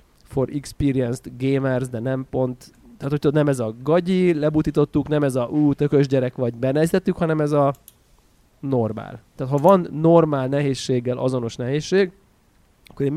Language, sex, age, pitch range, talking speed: Hungarian, male, 20-39, 120-145 Hz, 155 wpm